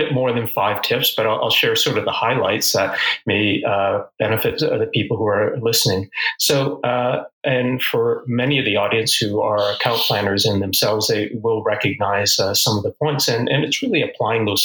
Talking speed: 200 wpm